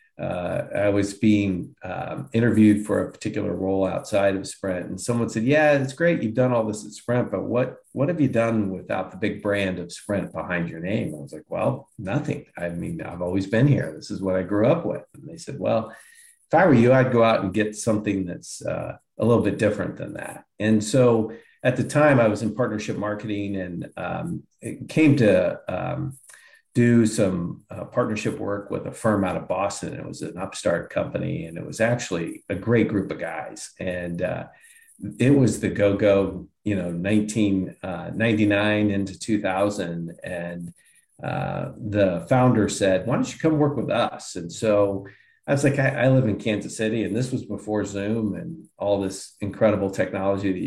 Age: 40-59